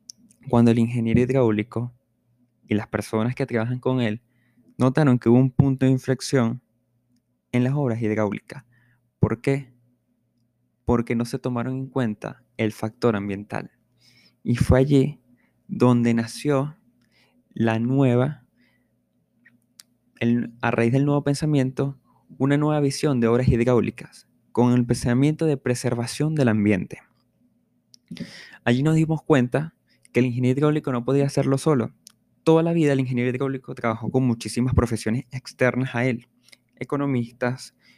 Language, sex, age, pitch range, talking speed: Spanish, male, 20-39, 115-135 Hz, 135 wpm